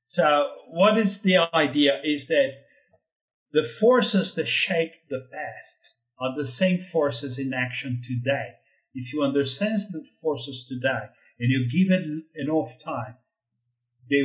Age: 50-69